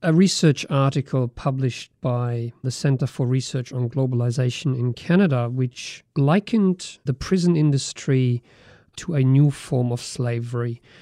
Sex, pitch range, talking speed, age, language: male, 130-155 Hz, 130 wpm, 40-59, English